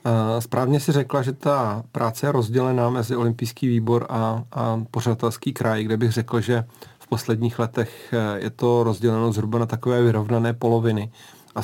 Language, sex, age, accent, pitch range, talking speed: Czech, male, 40-59, native, 115-120 Hz, 160 wpm